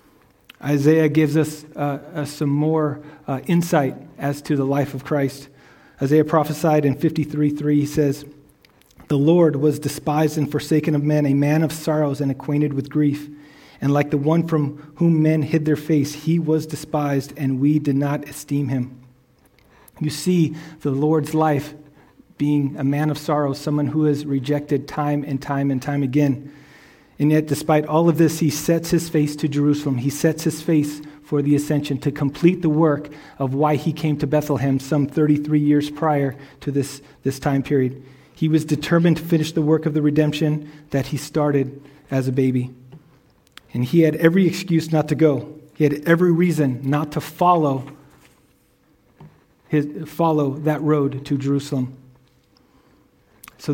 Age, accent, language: 40-59, American, English